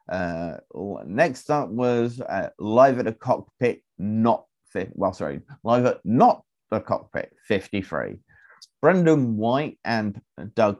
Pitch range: 95-125 Hz